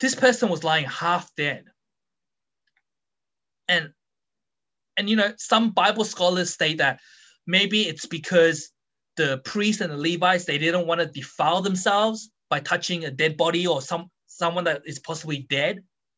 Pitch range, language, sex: 160-225 Hz, English, male